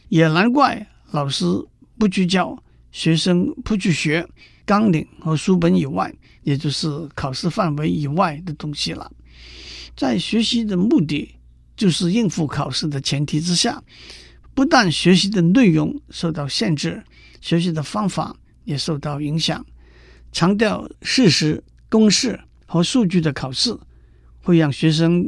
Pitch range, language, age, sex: 145-195 Hz, Chinese, 50-69, male